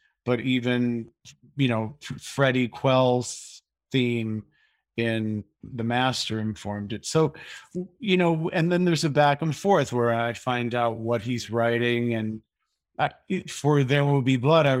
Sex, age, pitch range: male, 40-59, 110-130 Hz